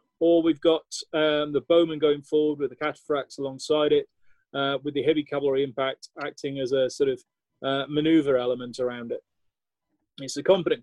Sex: male